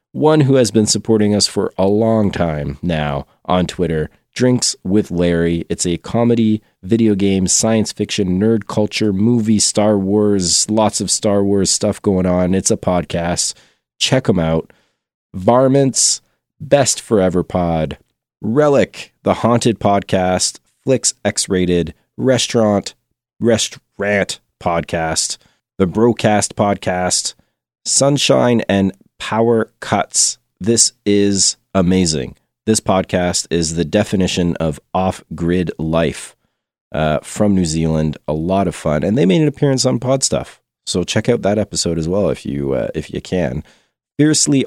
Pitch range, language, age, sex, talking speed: 85-110 Hz, English, 30-49, male, 135 wpm